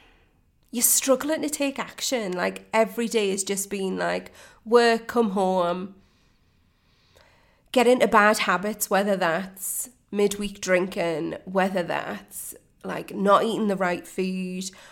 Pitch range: 190-235 Hz